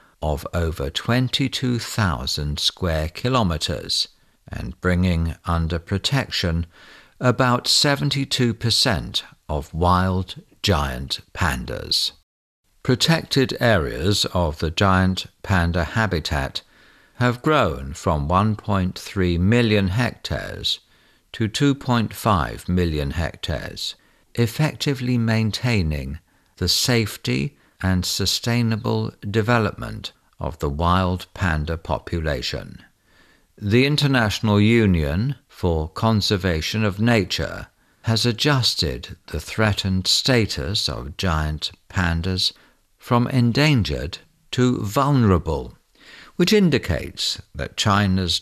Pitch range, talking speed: 85-120 Hz, 85 wpm